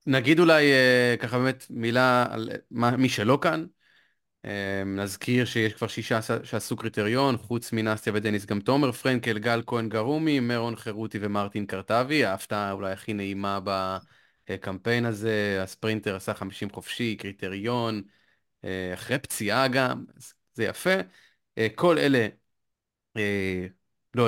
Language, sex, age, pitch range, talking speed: Hebrew, male, 30-49, 110-135 Hz, 115 wpm